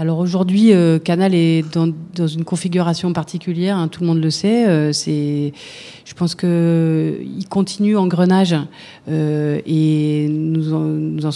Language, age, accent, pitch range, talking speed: French, 40-59, French, 155-185 Hz, 170 wpm